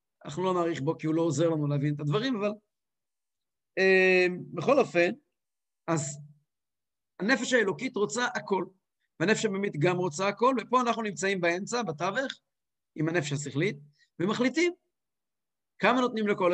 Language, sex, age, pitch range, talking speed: English, male, 50-69, 155-235 Hz, 140 wpm